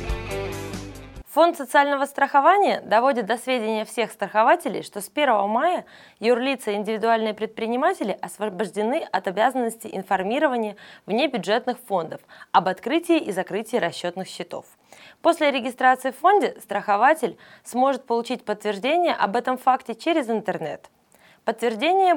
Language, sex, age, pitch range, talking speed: Russian, female, 20-39, 200-275 Hz, 115 wpm